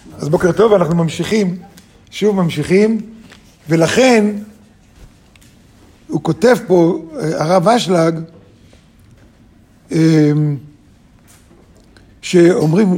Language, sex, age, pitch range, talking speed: Hebrew, male, 50-69, 160-210 Hz, 65 wpm